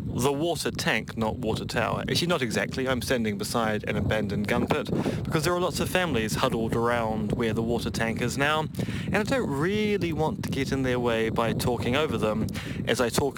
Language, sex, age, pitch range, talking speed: English, male, 30-49, 115-145 Hz, 210 wpm